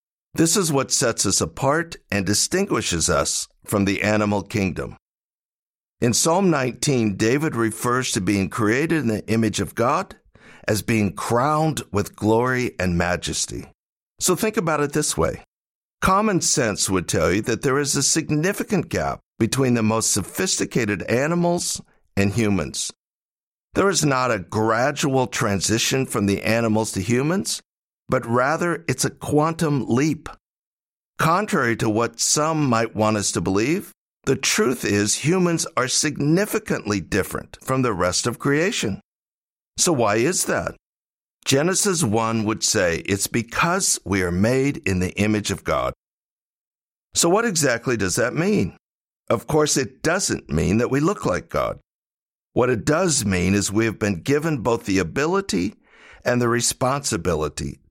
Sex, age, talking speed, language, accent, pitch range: male, 60-79, 150 wpm, English, American, 100-150 Hz